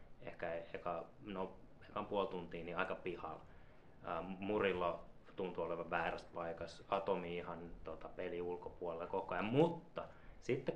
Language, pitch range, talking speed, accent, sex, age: Finnish, 90-100 Hz, 130 wpm, native, male, 20-39